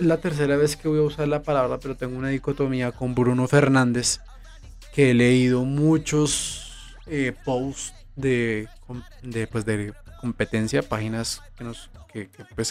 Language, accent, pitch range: Spanish, Colombian, 120-145 Hz